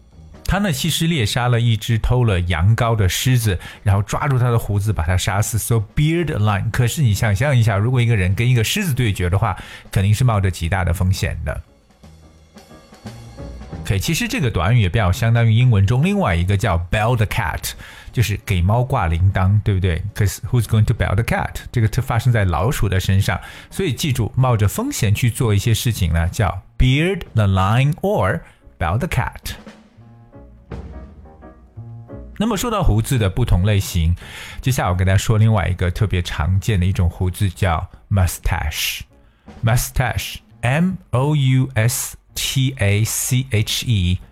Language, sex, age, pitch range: Chinese, male, 50-69, 95-125 Hz